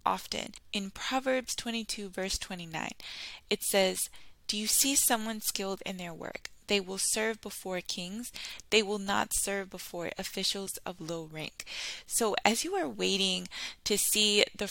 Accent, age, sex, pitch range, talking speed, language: American, 10-29, female, 180-215 Hz, 155 wpm, English